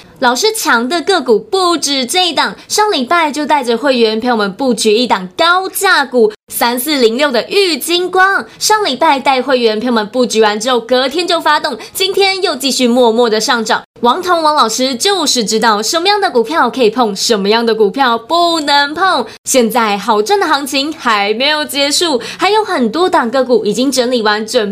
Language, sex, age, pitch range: Chinese, female, 20-39, 245-365 Hz